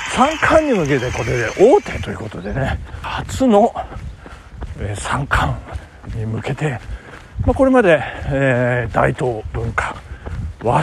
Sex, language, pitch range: male, Japanese, 125-200 Hz